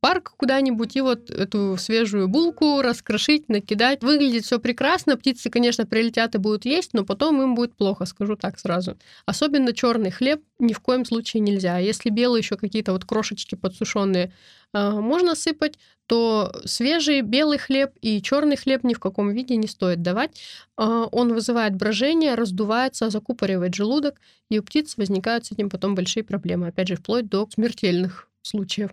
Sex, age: female, 20-39